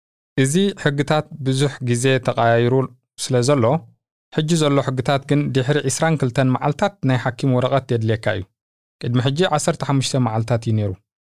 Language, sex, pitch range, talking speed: Amharic, male, 115-140 Hz, 125 wpm